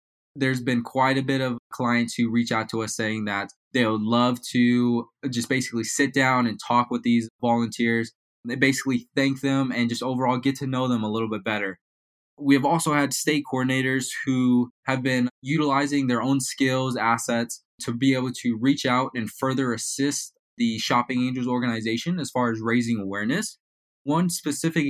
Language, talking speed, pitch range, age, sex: English, 185 wpm, 120-135 Hz, 20-39, male